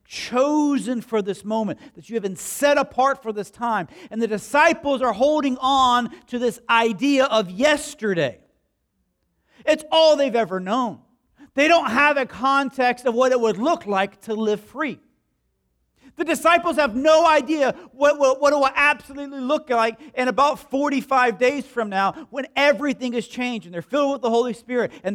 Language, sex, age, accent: English, male, 40-59, American